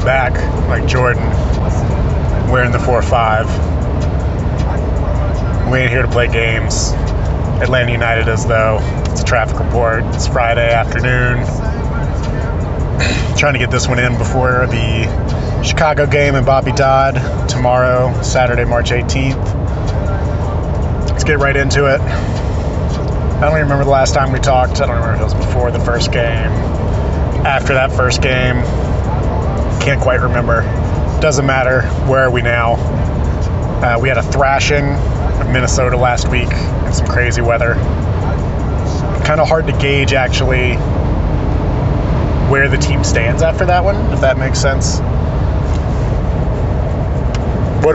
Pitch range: 85-125 Hz